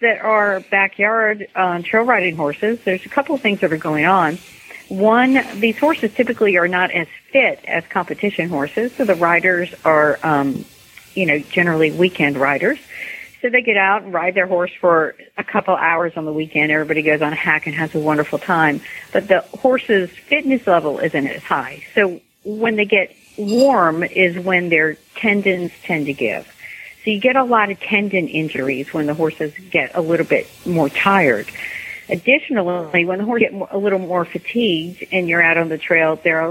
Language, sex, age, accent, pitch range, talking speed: English, female, 50-69, American, 160-205 Hz, 190 wpm